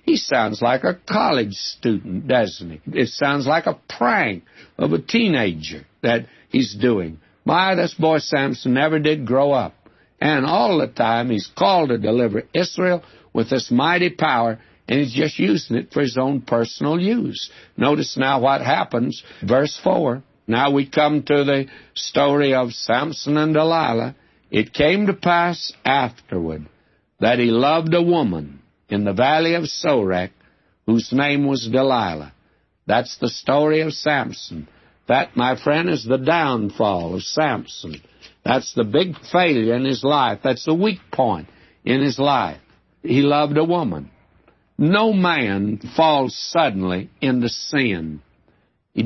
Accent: American